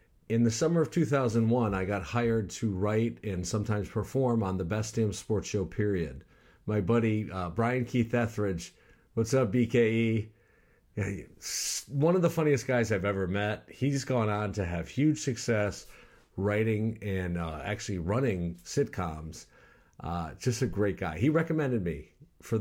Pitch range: 100-130 Hz